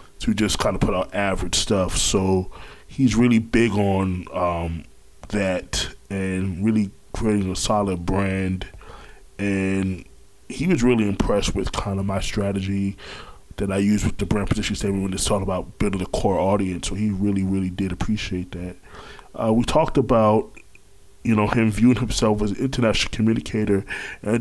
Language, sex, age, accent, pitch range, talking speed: English, male, 20-39, American, 95-110 Hz, 165 wpm